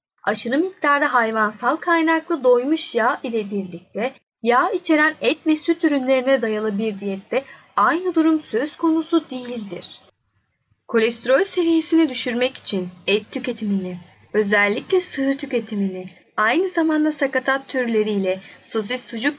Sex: female